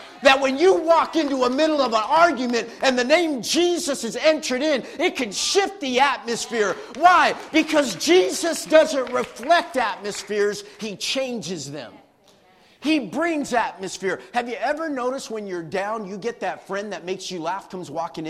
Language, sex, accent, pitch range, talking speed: English, male, American, 200-290 Hz, 165 wpm